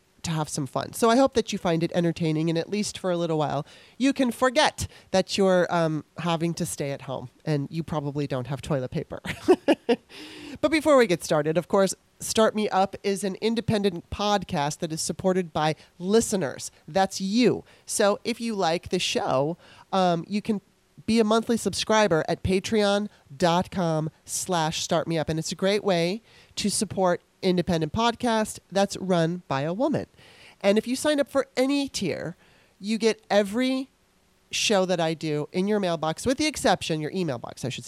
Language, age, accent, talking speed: English, 30-49, American, 185 wpm